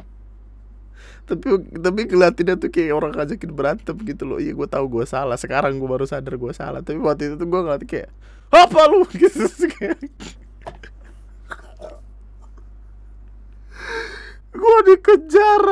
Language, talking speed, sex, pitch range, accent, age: Indonesian, 125 wpm, male, 130-205 Hz, native, 20-39